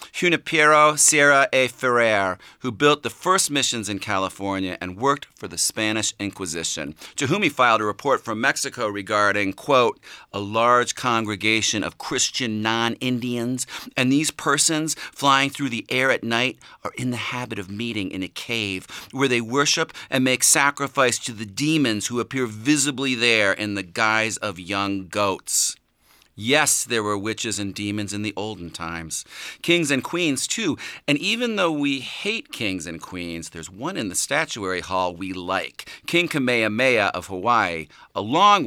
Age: 40-59